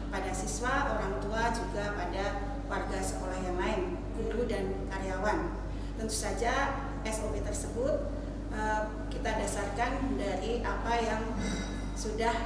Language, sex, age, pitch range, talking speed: Indonesian, female, 40-59, 225-260 Hz, 115 wpm